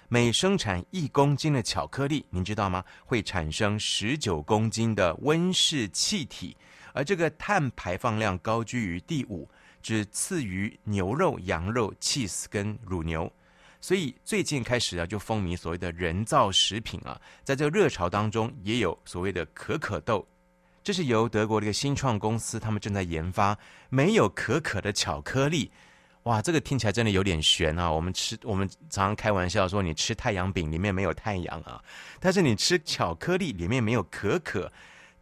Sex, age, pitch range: male, 30-49, 90-130 Hz